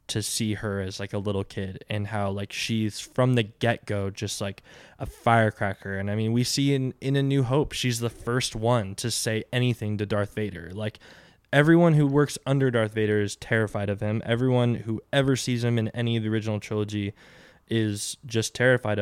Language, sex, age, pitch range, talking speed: English, male, 20-39, 100-120 Hz, 200 wpm